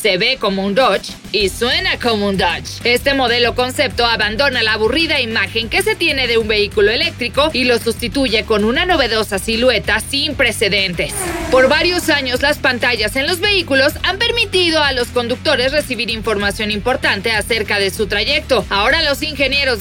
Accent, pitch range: Mexican, 220-300 Hz